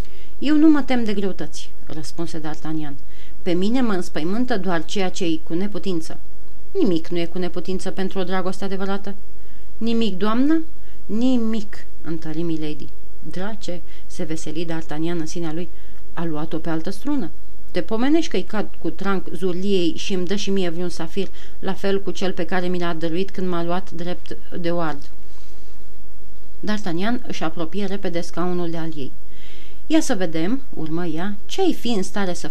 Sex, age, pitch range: female, 30-49, 165-200 Hz